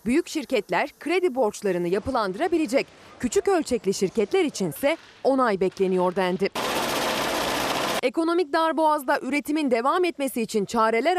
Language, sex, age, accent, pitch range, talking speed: Turkish, female, 30-49, native, 205-320 Hz, 100 wpm